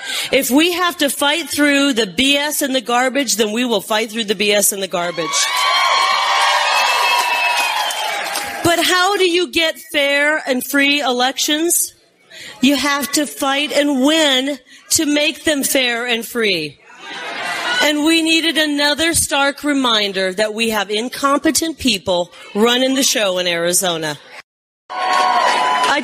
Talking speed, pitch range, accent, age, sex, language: 135 wpm, 220-290 Hz, American, 40-59, female, English